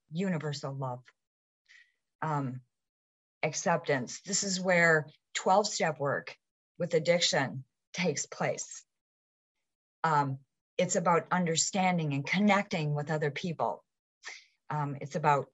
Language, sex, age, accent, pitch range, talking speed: English, female, 40-59, American, 150-185 Hz, 95 wpm